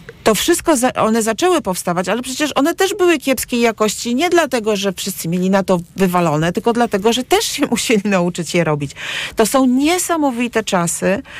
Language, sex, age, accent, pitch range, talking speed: Polish, female, 40-59, native, 180-250 Hz, 175 wpm